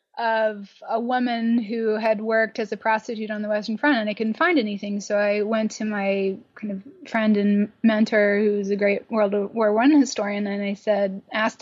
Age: 20-39